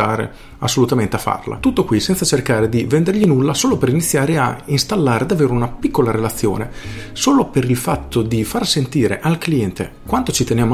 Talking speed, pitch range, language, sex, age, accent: 175 wpm, 110-140 Hz, Italian, male, 40-59, native